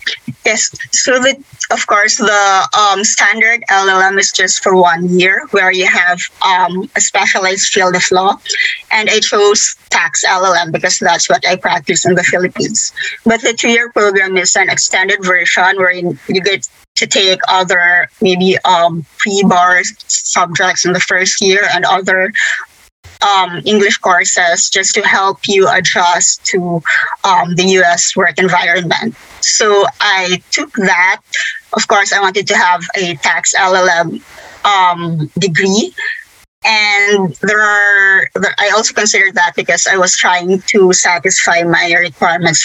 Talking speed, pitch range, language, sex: 150 wpm, 180-200 Hz, English, female